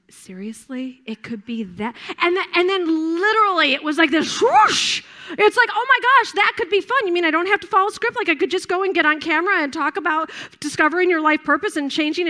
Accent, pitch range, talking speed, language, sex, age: American, 275-355 Hz, 235 wpm, English, female, 40-59